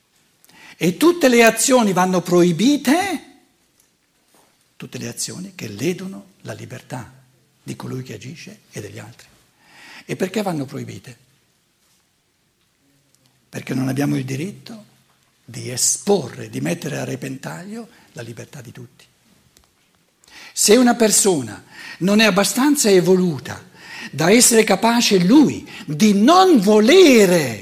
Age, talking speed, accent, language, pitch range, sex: 60-79, 115 wpm, native, Italian, 140-220 Hz, male